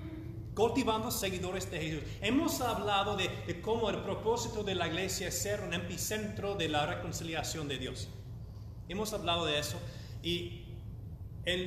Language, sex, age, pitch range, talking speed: English, male, 30-49, 110-155 Hz, 150 wpm